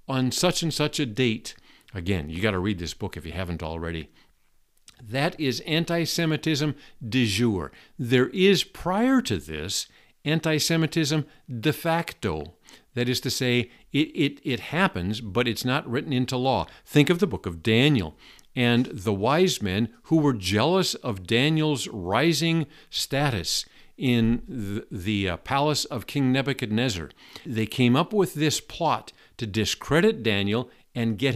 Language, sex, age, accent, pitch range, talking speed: English, male, 50-69, American, 110-155 Hz, 155 wpm